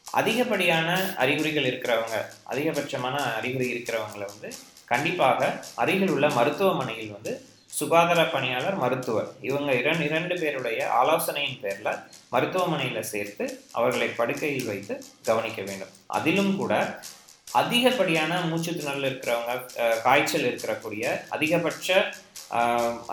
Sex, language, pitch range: male, Tamil, 130-170 Hz